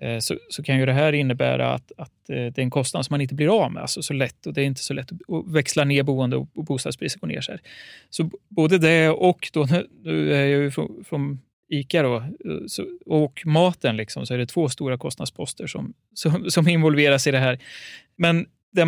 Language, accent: Swedish, native